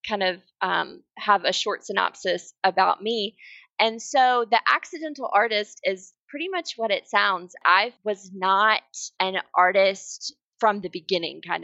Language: English